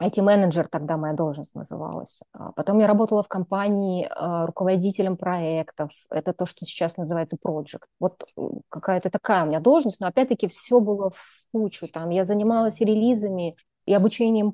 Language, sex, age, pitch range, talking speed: Russian, female, 20-39, 165-215 Hz, 150 wpm